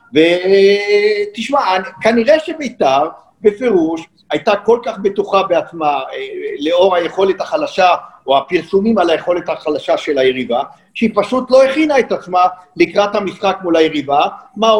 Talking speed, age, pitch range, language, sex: 120 wpm, 50-69, 170-220 Hz, Hebrew, male